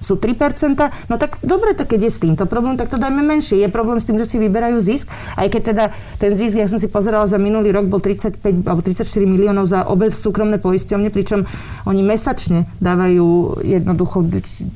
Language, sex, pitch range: Slovak, female, 195-230 Hz